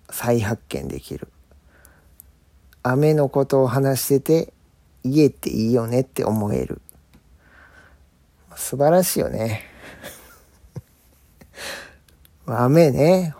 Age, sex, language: 40-59, male, Japanese